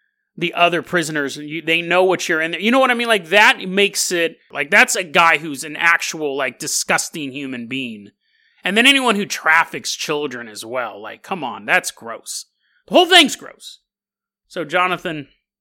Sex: male